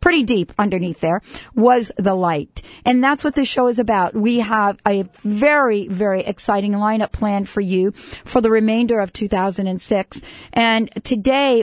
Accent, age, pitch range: American, 40-59, 190-240 Hz